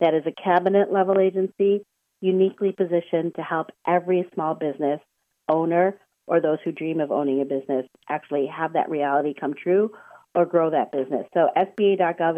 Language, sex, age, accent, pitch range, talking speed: English, female, 40-59, American, 170-195 Hz, 160 wpm